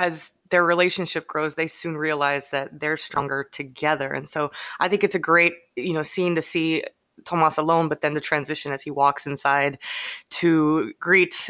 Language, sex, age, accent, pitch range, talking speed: English, female, 20-39, American, 150-185 Hz, 185 wpm